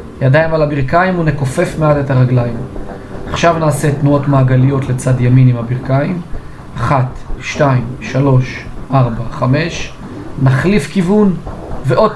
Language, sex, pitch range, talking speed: Hebrew, male, 130-170 Hz, 115 wpm